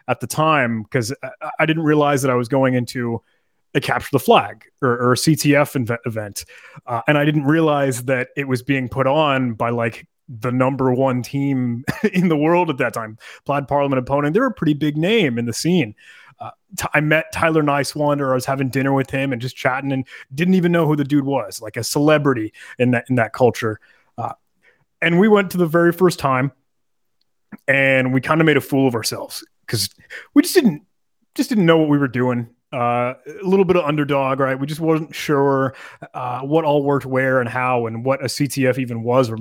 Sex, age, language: male, 30-49, English